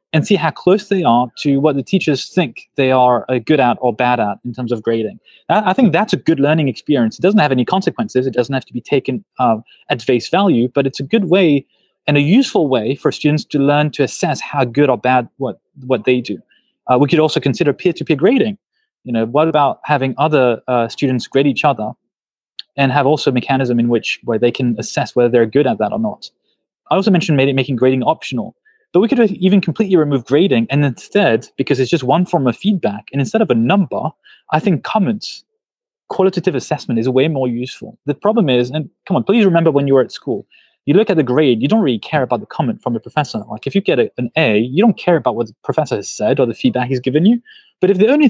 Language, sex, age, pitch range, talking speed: English, male, 20-39, 125-185 Hz, 240 wpm